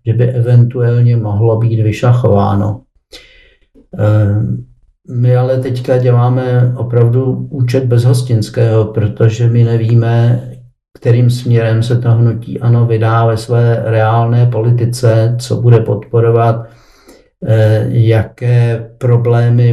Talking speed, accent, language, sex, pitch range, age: 95 wpm, native, Czech, male, 115-125 Hz, 50-69